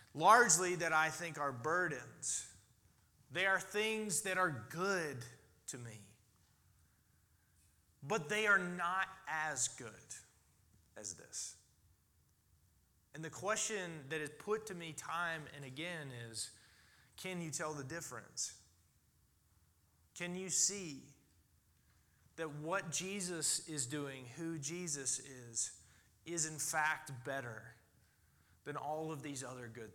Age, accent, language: 30-49, American, English